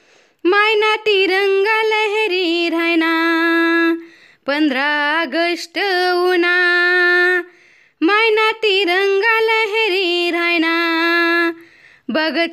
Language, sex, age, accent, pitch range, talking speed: Marathi, female, 20-39, native, 335-430 Hz, 55 wpm